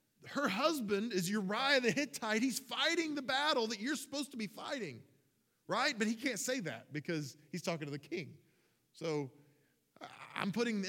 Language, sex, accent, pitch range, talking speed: English, male, American, 160-245 Hz, 175 wpm